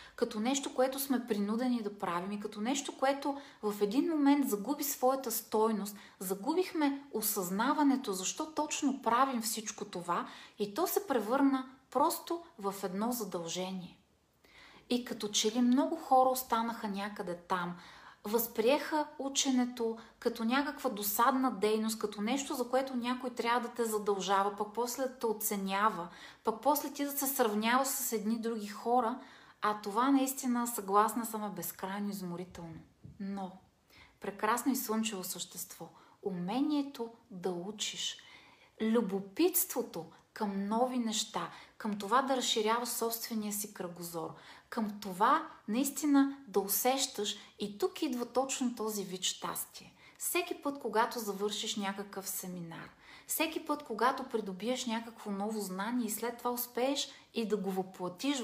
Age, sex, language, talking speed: 30-49, female, Bulgarian, 135 wpm